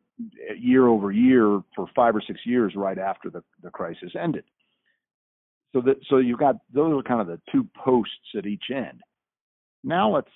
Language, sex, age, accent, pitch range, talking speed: English, male, 50-69, American, 105-135 Hz, 180 wpm